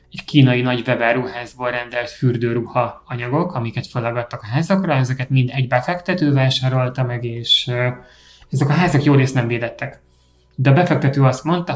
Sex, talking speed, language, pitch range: male, 150 wpm, Hungarian, 125-150 Hz